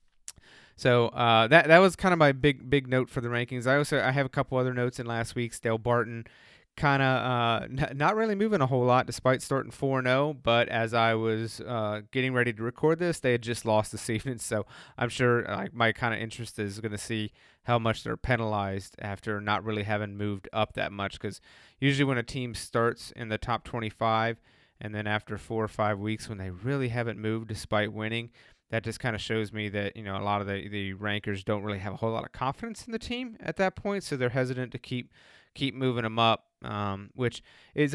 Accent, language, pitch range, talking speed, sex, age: American, English, 110-130 Hz, 230 wpm, male, 30-49